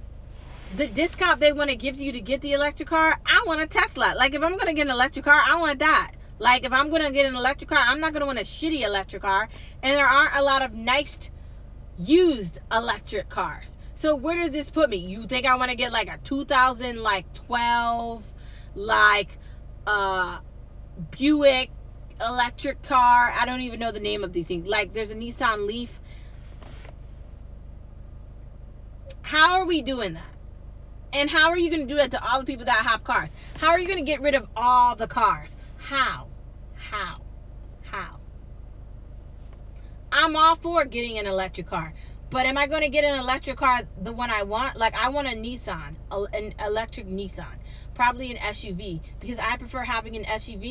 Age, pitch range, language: 30-49, 220-285 Hz, English